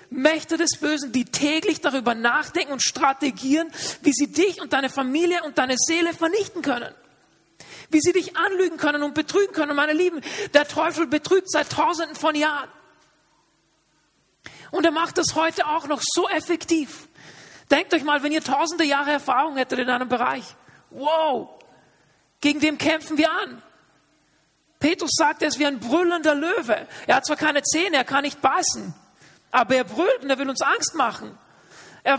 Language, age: German, 40-59